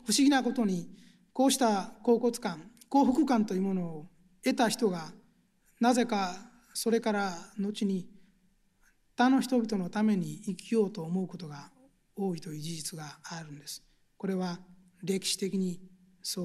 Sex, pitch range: male, 185-235 Hz